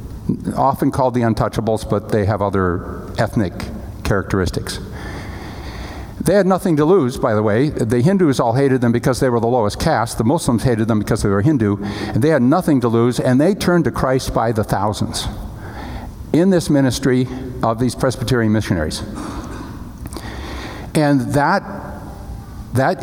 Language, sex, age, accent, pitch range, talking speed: English, male, 60-79, American, 105-140 Hz, 160 wpm